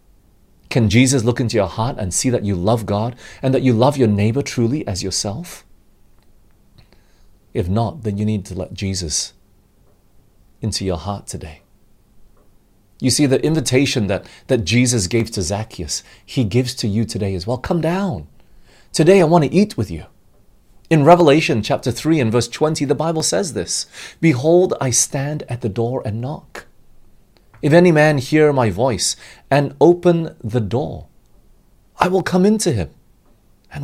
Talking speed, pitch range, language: 165 wpm, 100-140 Hz, English